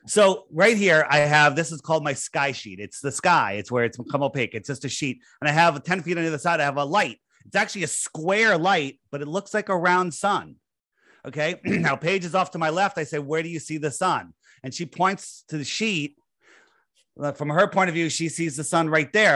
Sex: male